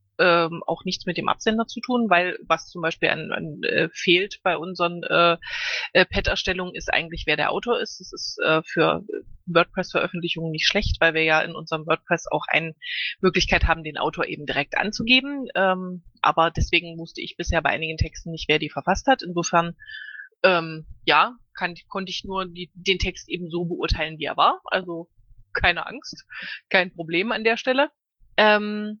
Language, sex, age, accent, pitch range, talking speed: German, female, 20-39, German, 165-205 Hz, 180 wpm